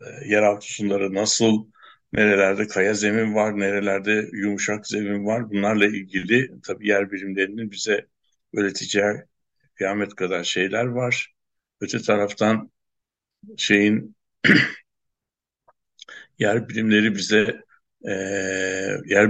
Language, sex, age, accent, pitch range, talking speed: Turkish, male, 60-79, native, 100-110 Hz, 90 wpm